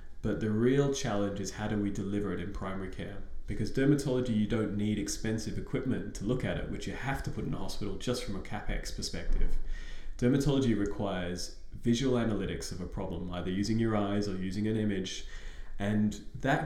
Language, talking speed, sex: English, 195 wpm, male